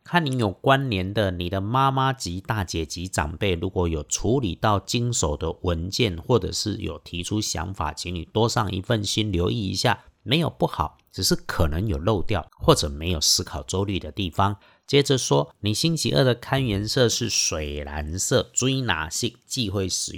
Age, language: 50-69, Chinese